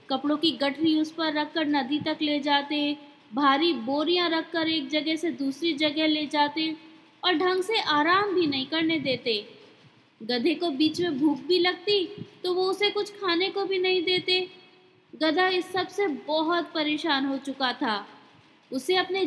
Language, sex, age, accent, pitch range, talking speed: Hindi, female, 20-39, native, 285-365 Hz, 170 wpm